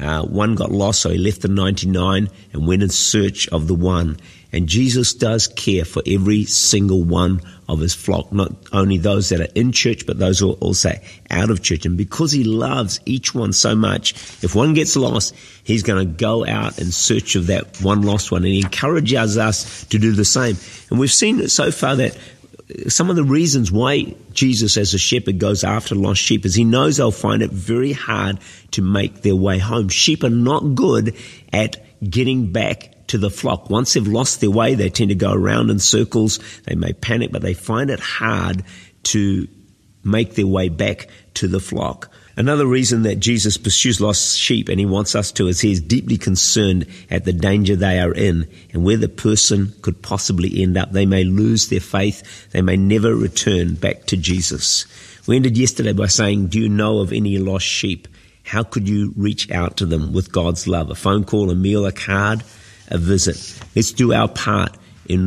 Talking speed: 205 wpm